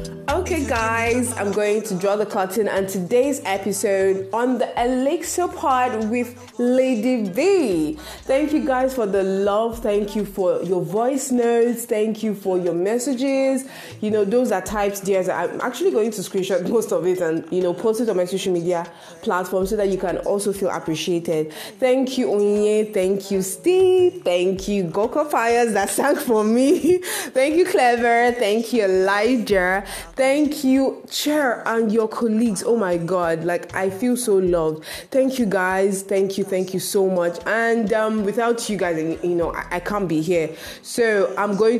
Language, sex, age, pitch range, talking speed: English, female, 20-39, 185-245 Hz, 175 wpm